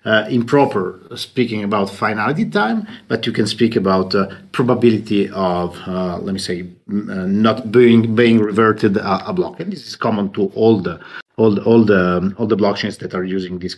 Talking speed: 195 wpm